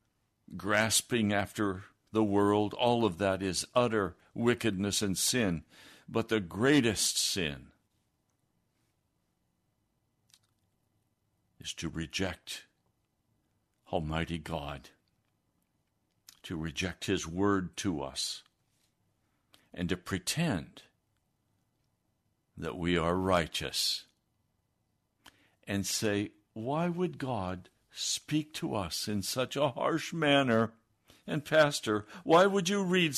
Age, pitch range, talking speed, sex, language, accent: 60-79, 95-120 Hz, 95 wpm, male, English, American